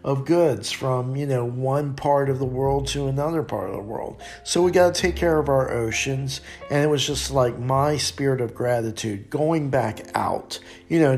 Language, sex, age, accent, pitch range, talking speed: English, male, 50-69, American, 115-140 Hz, 210 wpm